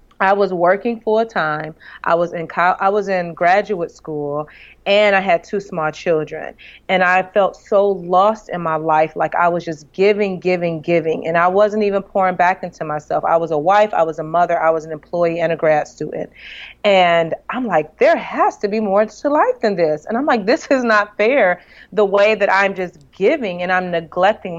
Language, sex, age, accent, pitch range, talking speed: English, female, 30-49, American, 170-205 Hz, 210 wpm